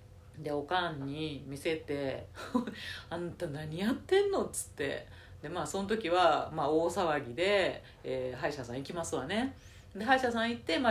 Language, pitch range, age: Japanese, 130-175 Hz, 40-59